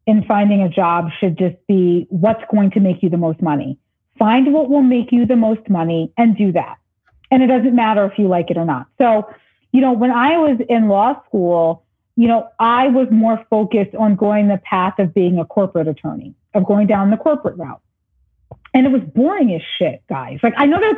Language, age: English, 30-49